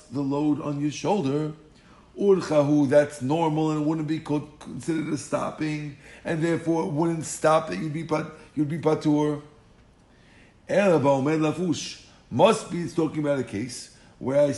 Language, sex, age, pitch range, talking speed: English, male, 50-69, 140-160 Hz, 140 wpm